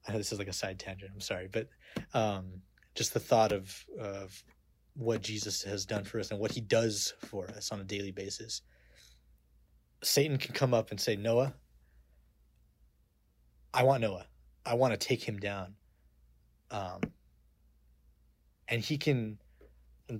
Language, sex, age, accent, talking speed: English, male, 20-39, American, 160 wpm